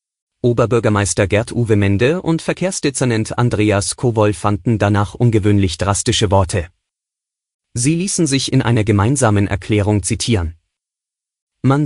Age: 30-49